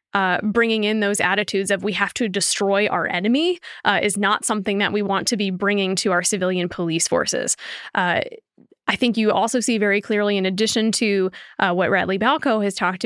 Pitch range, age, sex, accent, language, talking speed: 190-225 Hz, 20-39, female, American, English, 200 wpm